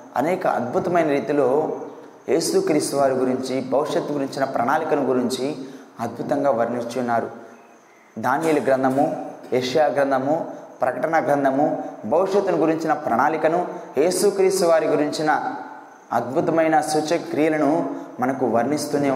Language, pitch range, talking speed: Telugu, 130-155 Hz, 90 wpm